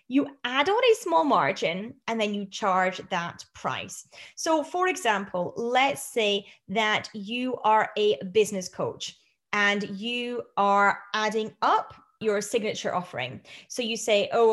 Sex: female